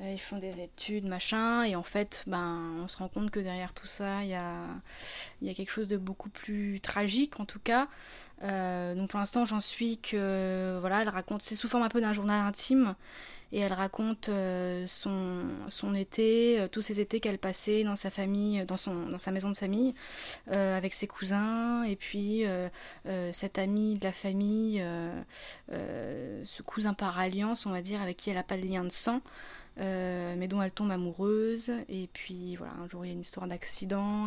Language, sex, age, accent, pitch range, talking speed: French, female, 20-39, French, 185-215 Hz, 210 wpm